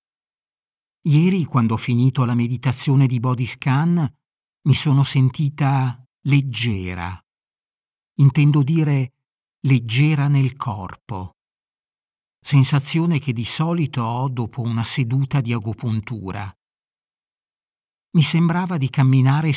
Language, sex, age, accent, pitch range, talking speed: Italian, male, 50-69, native, 115-140 Hz, 95 wpm